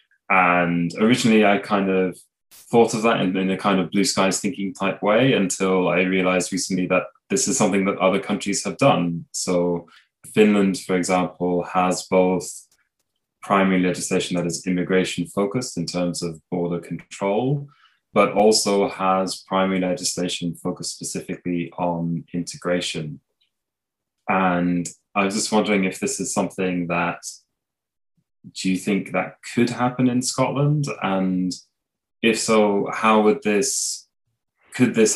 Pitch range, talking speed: 85-100 Hz, 140 wpm